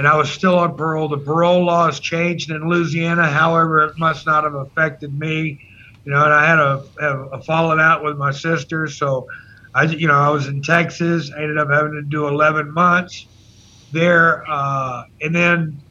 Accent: American